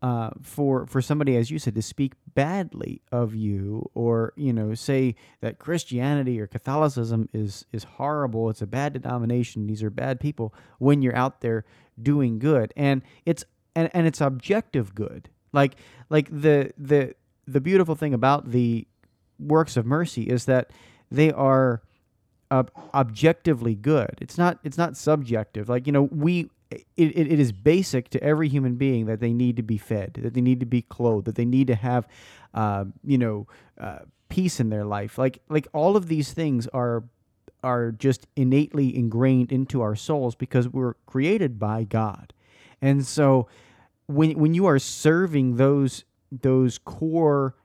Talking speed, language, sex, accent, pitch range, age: 170 wpm, English, male, American, 115-145 Hz, 30-49